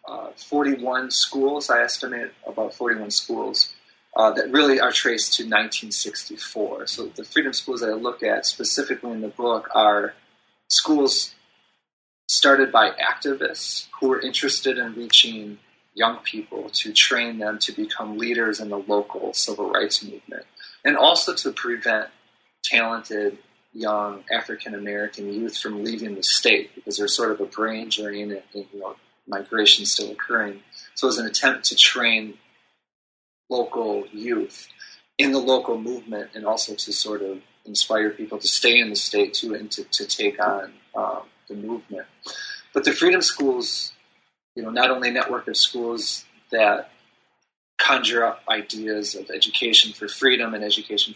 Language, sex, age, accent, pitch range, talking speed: English, male, 30-49, American, 105-135 Hz, 155 wpm